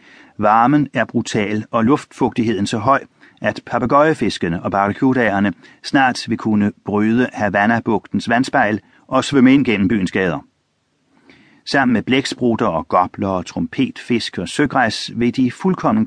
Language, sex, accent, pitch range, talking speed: Danish, male, native, 105-140 Hz, 135 wpm